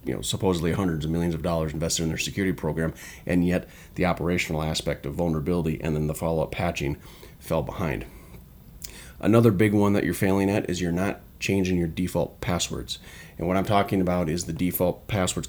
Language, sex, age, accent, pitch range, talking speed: English, male, 30-49, American, 85-100 Hz, 195 wpm